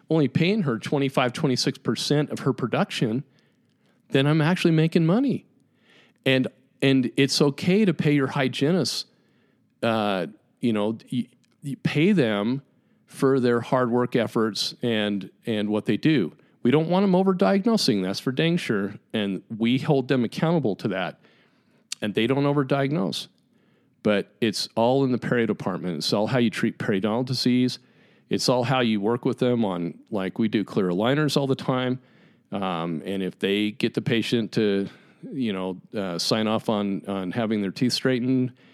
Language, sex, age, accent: English, male, 40-59, American